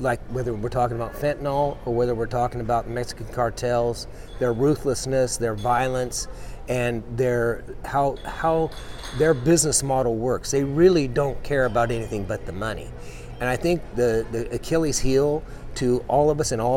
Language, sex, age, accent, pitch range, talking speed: English, male, 40-59, American, 120-140 Hz, 170 wpm